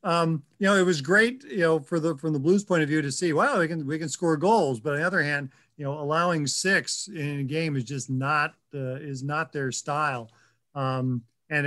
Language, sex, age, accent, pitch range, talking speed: English, male, 40-59, American, 140-175 Hz, 240 wpm